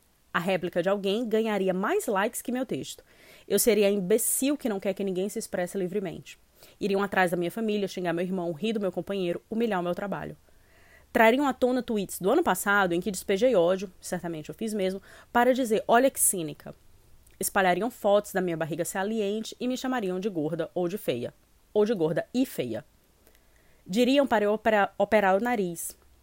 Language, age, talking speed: Portuguese, 20-39, 190 wpm